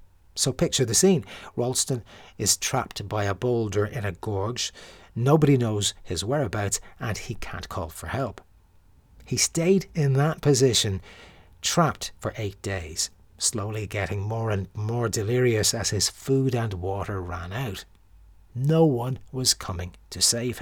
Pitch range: 95-135 Hz